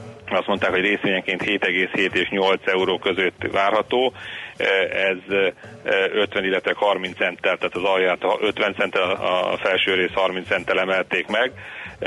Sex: male